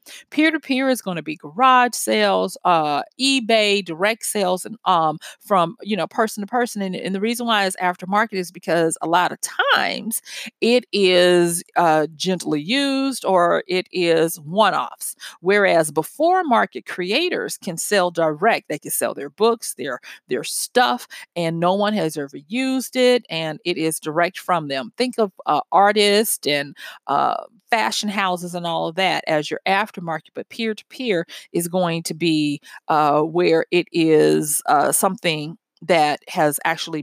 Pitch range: 165-230 Hz